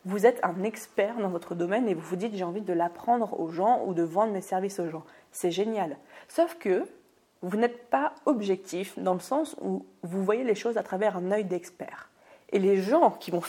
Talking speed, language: 225 wpm, French